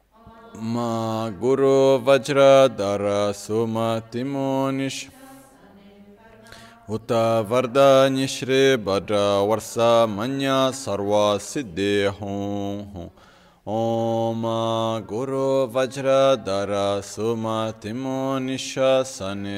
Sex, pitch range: male, 100-135 Hz